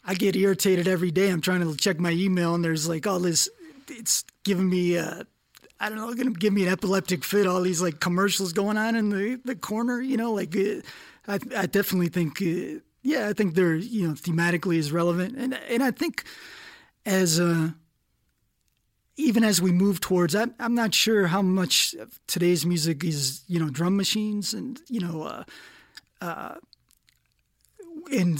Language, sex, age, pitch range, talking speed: English, male, 20-39, 170-210 Hz, 185 wpm